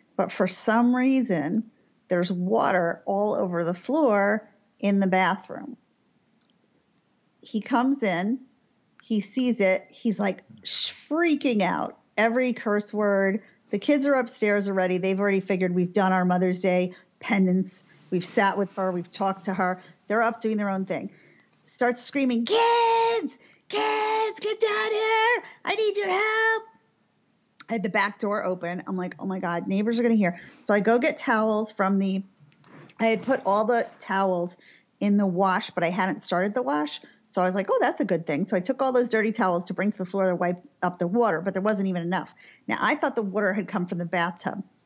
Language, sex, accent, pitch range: English, female, American, 185-240 Hz